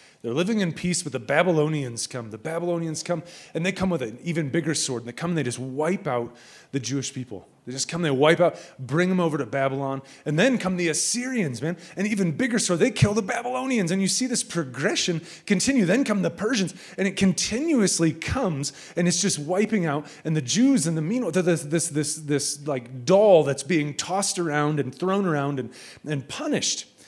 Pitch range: 140-185 Hz